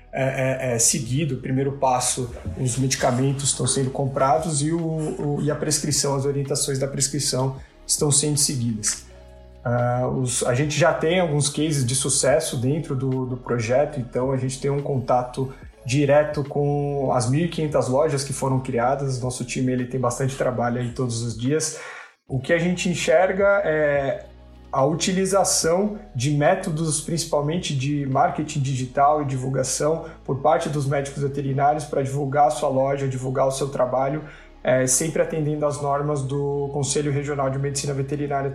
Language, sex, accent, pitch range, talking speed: Portuguese, male, Brazilian, 130-150 Hz, 150 wpm